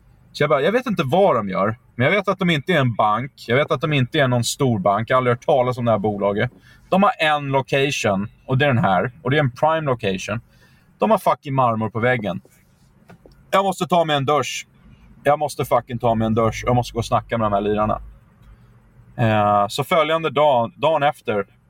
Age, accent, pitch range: 30-49, native, 110-145 Hz